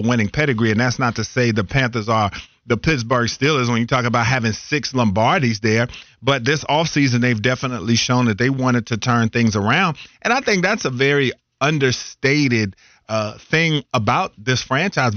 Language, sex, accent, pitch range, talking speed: English, male, American, 110-135 Hz, 180 wpm